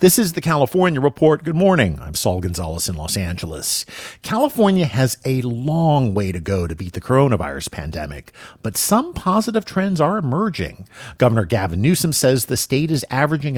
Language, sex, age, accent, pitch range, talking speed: English, male, 50-69, American, 100-150 Hz, 170 wpm